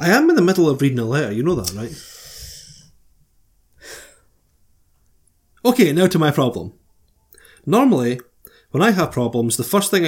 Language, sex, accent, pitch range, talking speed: English, male, British, 120-165 Hz, 155 wpm